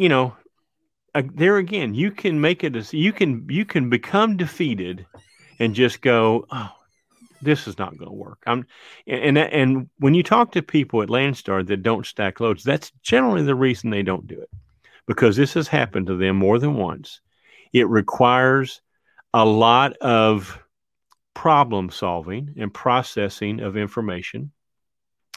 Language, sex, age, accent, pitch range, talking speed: English, male, 40-59, American, 110-150 Hz, 165 wpm